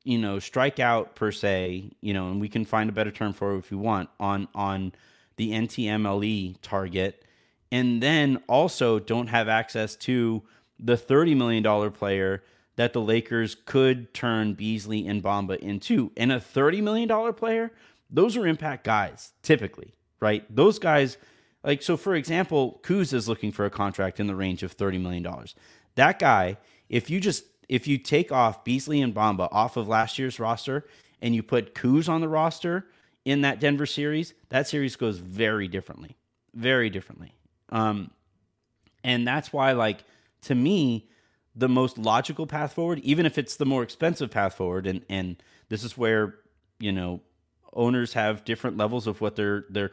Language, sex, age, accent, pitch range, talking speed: English, male, 30-49, American, 100-130 Hz, 175 wpm